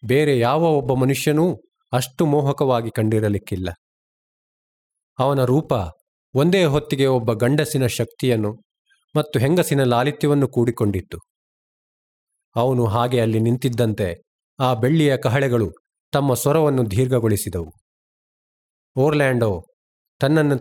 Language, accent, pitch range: Kannada, native, 115-145 Hz